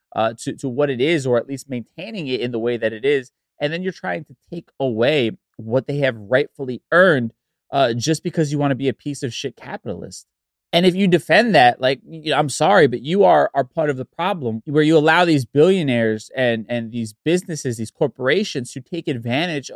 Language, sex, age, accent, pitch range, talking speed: English, male, 20-39, American, 125-155 Hz, 220 wpm